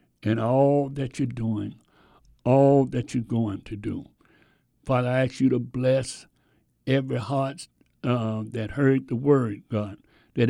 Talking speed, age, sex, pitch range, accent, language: 150 wpm, 60-79, male, 115-145 Hz, American, English